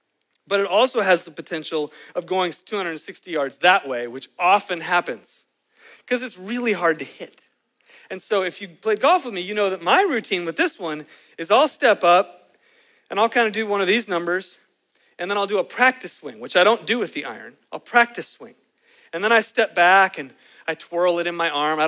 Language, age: English, 40-59